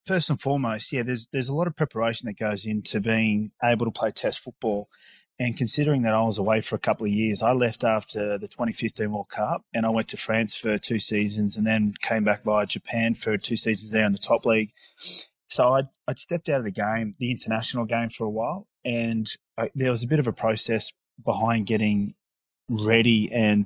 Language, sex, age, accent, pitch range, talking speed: English, male, 20-39, Australian, 110-120 Hz, 215 wpm